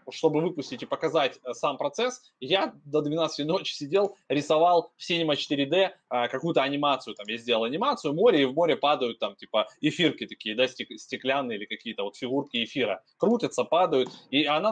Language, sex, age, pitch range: Russian, male, 20-39, 135-175 Hz